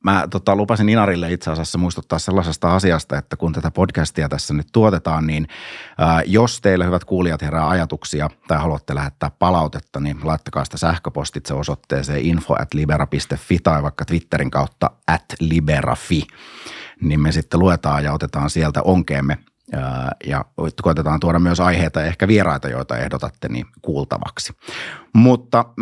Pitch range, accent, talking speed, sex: 75-90 Hz, native, 140 wpm, male